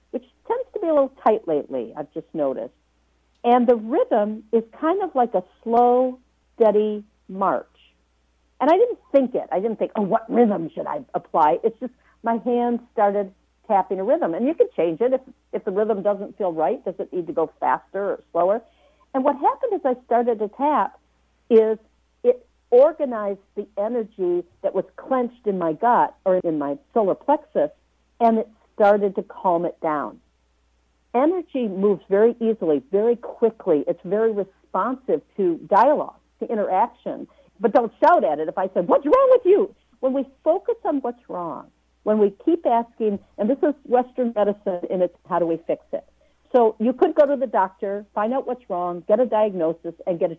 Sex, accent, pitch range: female, American, 190-270 Hz